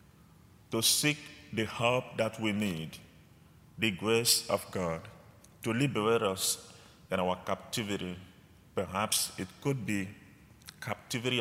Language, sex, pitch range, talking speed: English, male, 95-125 Hz, 115 wpm